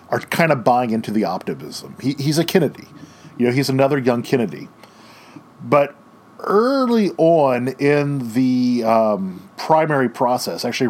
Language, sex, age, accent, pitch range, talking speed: English, male, 40-59, American, 120-160 Hz, 145 wpm